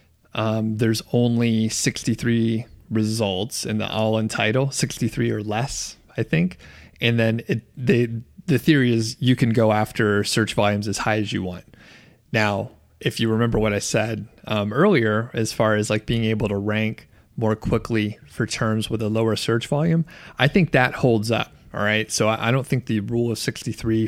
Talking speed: 185 wpm